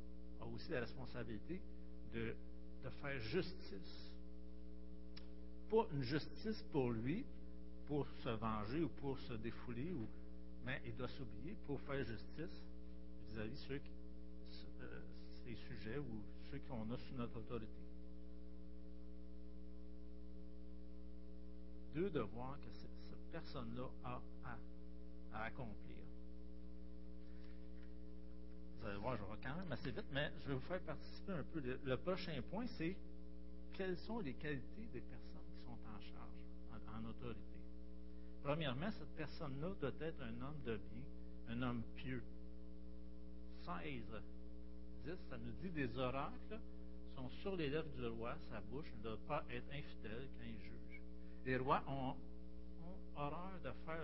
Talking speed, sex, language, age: 140 wpm, male, French, 60-79